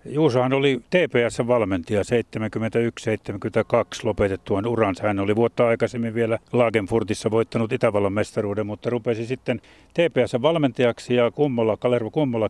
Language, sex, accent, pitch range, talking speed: Finnish, male, native, 105-125 Hz, 110 wpm